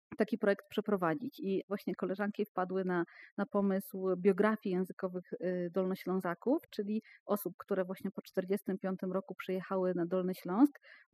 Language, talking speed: Polish, 130 wpm